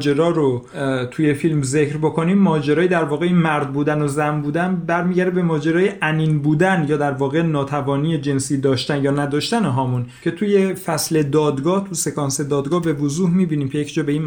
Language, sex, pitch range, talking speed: Persian, male, 135-175 Hz, 175 wpm